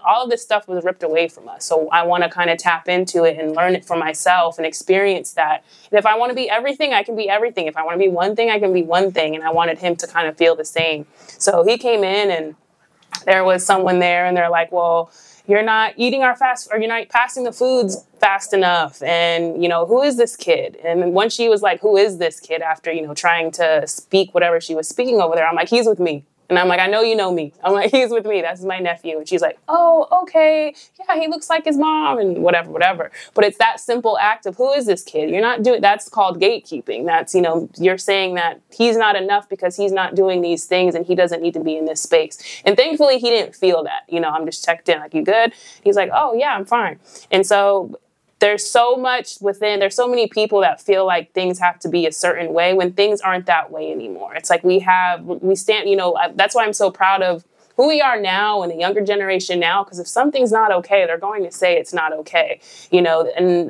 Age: 20-39